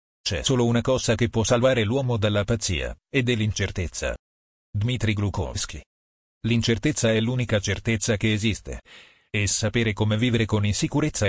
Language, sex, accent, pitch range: Italian, male, native, 95-120 Hz